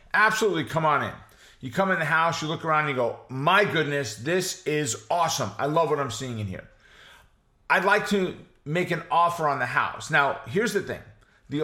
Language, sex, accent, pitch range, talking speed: English, male, American, 145-200 Hz, 205 wpm